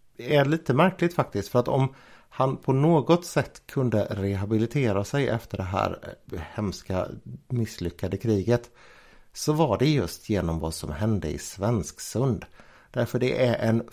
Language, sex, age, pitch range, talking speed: Swedish, male, 60-79, 100-130 Hz, 150 wpm